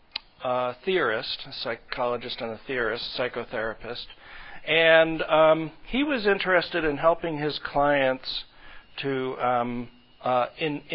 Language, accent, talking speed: English, American, 110 wpm